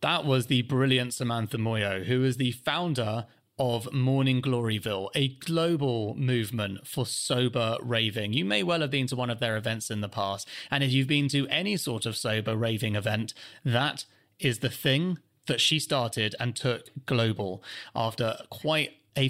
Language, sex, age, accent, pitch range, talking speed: English, male, 30-49, British, 115-155 Hz, 175 wpm